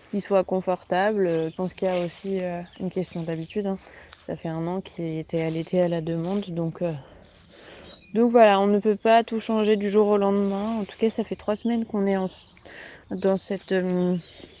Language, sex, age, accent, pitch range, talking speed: French, female, 20-39, French, 165-190 Hz, 205 wpm